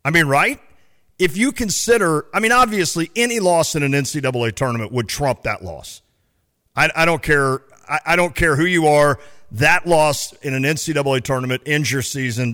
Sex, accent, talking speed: male, American, 190 wpm